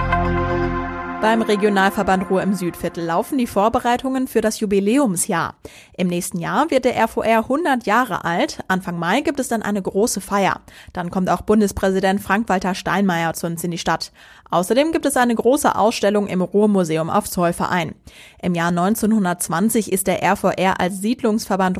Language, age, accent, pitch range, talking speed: German, 20-39, German, 175-220 Hz, 155 wpm